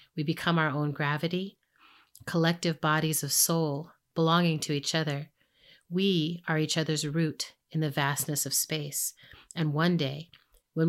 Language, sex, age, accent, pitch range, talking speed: English, female, 30-49, American, 150-170 Hz, 150 wpm